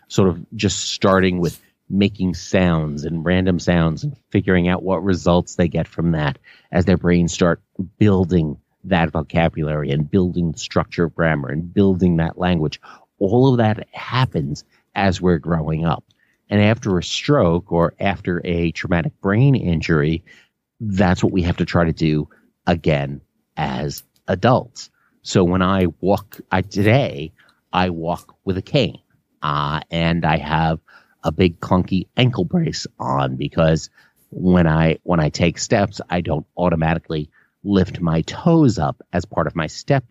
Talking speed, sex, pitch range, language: 155 wpm, male, 80-95 Hz, English